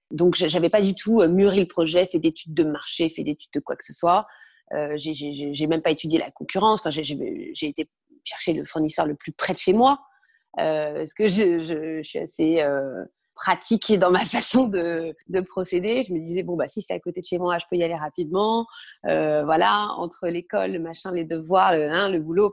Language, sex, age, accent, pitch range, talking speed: French, female, 30-49, French, 155-215 Hz, 235 wpm